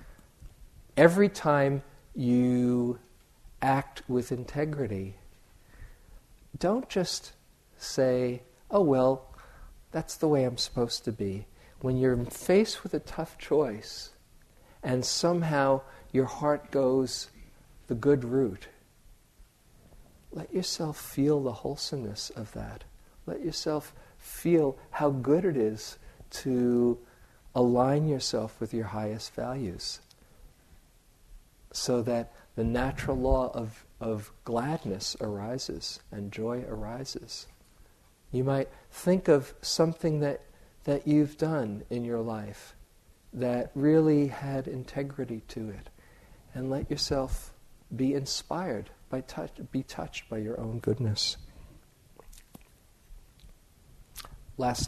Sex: male